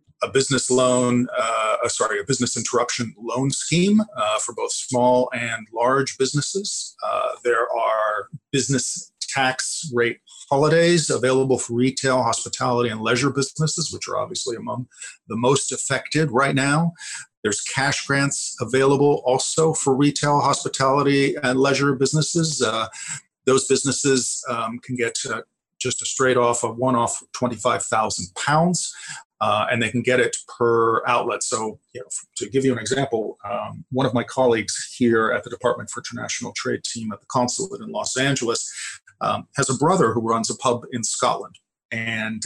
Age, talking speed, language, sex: 50-69, 155 wpm, English, male